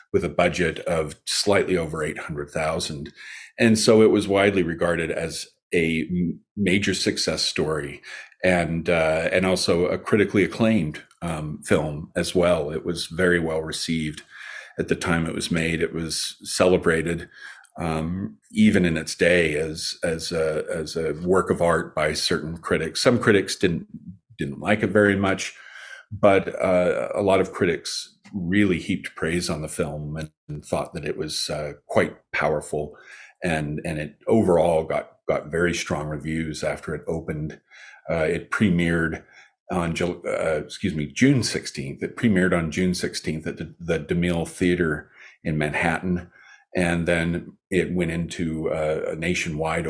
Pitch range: 80-90 Hz